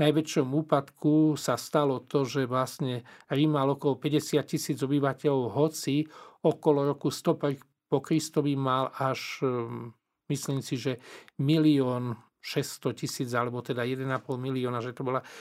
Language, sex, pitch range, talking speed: Slovak, male, 135-155 Hz, 130 wpm